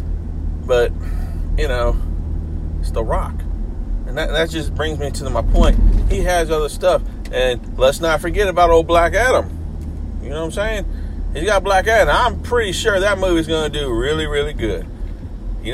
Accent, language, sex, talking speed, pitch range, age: American, English, male, 185 wpm, 80-130 Hz, 40-59